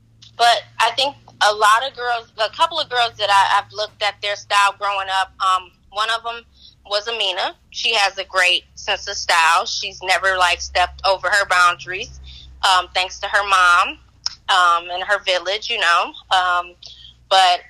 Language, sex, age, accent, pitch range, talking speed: English, female, 20-39, American, 185-220 Hz, 180 wpm